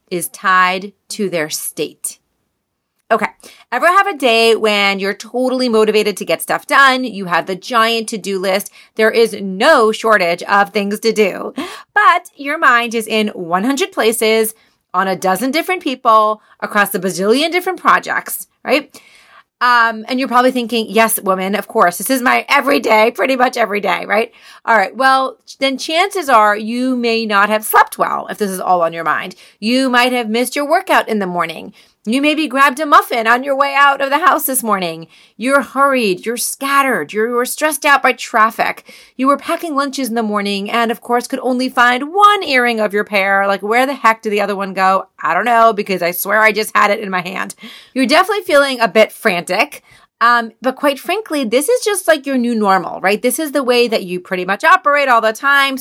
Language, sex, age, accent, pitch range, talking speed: English, female, 30-49, American, 205-270 Hz, 205 wpm